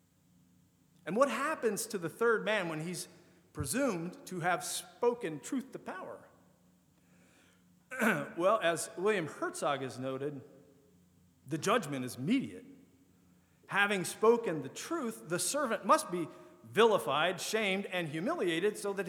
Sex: male